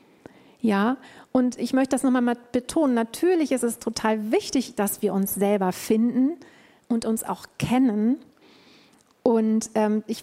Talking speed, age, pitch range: 140 wpm, 40-59, 220-265 Hz